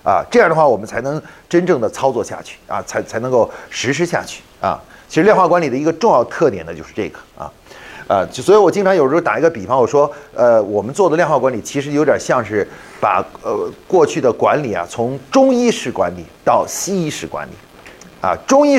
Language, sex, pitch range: Chinese, male, 135-195 Hz